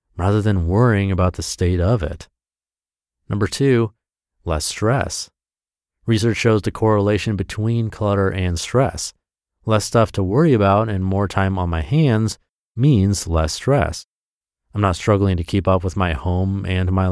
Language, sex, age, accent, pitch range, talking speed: English, male, 30-49, American, 85-110 Hz, 160 wpm